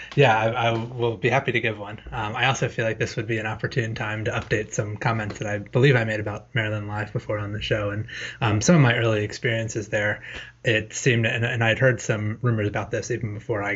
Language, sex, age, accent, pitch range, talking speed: English, male, 20-39, American, 105-120 Hz, 250 wpm